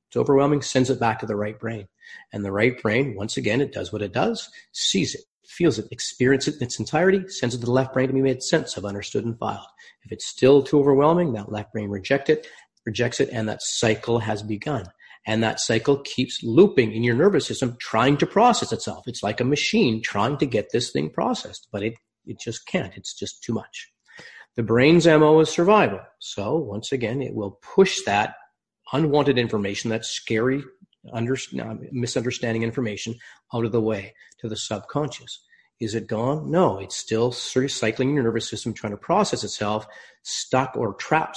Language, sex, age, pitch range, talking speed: English, male, 40-59, 110-140 Hz, 200 wpm